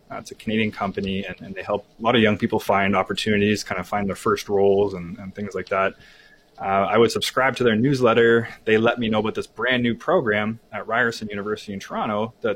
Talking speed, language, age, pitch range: 230 wpm, English, 20-39, 105-115 Hz